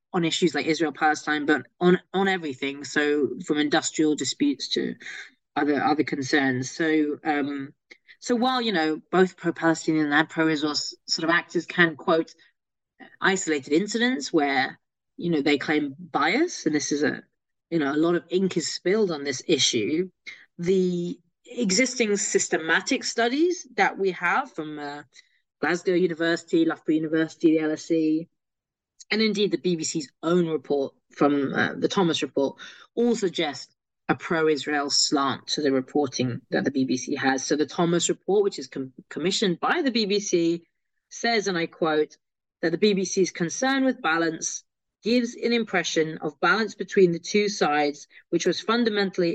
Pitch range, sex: 150-190 Hz, female